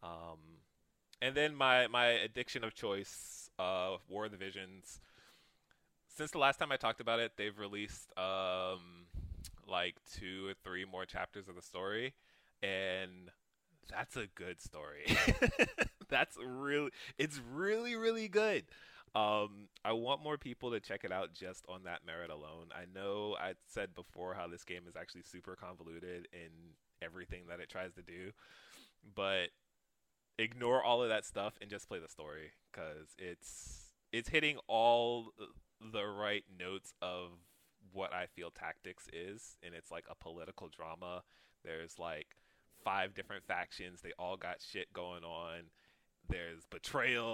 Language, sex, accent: English, male, American